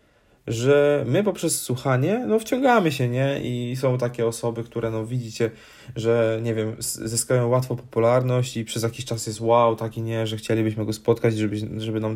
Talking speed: 170 wpm